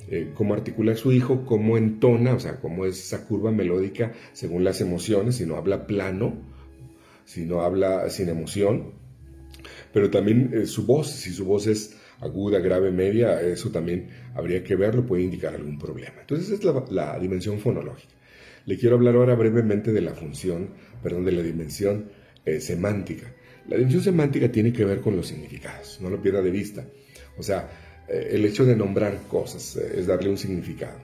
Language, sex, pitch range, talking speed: Spanish, male, 90-120 Hz, 180 wpm